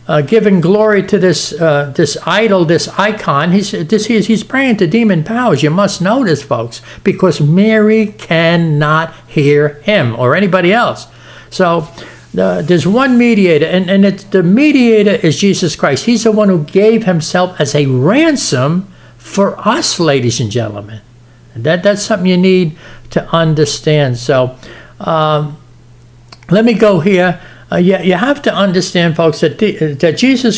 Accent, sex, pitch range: American, male, 140-200 Hz